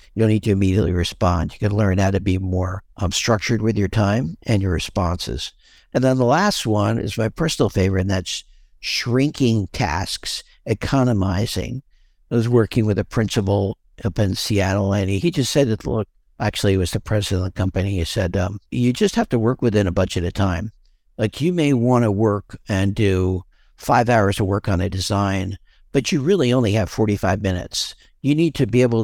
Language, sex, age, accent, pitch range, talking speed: English, male, 60-79, American, 95-120 Hz, 205 wpm